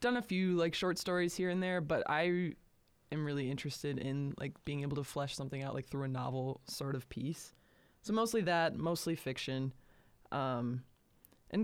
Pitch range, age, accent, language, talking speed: 125-160 Hz, 20-39, American, English, 185 wpm